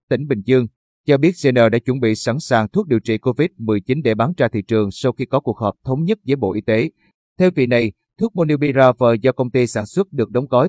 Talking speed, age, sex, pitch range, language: 245 wpm, 30-49, male, 115-140 Hz, Vietnamese